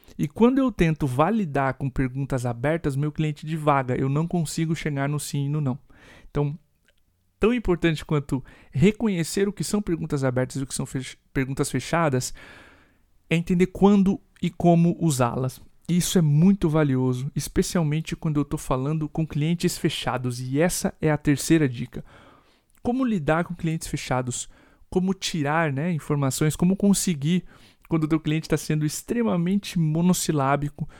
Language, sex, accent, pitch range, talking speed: Portuguese, male, Brazilian, 140-175 Hz, 155 wpm